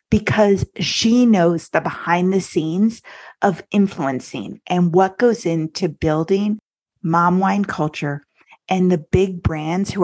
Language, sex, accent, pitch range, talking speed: English, female, American, 170-205 Hz, 130 wpm